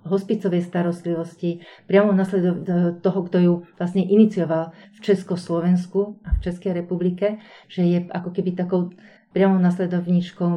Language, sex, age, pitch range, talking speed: Slovak, female, 40-59, 170-195 Hz, 125 wpm